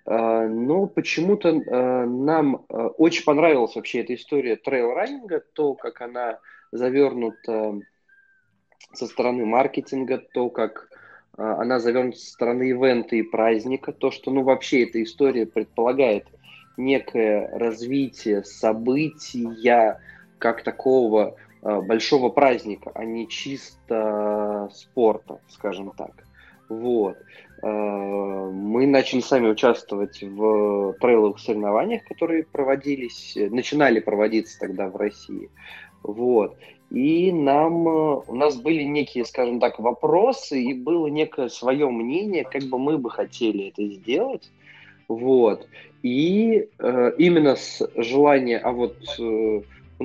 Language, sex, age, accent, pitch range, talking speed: Russian, male, 20-39, native, 110-140 Hz, 110 wpm